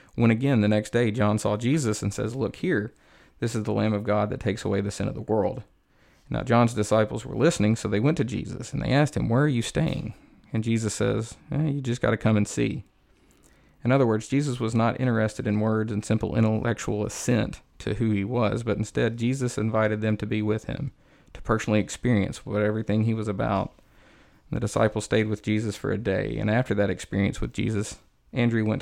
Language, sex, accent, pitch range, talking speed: English, male, American, 105-120 Hz, 220 wpm